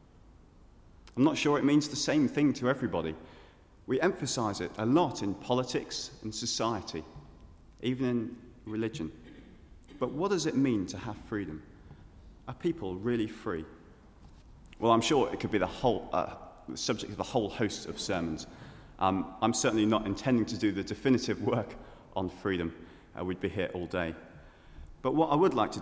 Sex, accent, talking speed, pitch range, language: male, British, 170 wpm, 85-120 Hz, English